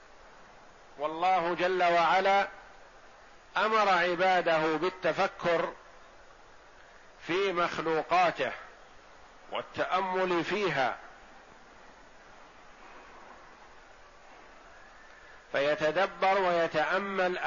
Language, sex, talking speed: Arabic, male, 40 wpm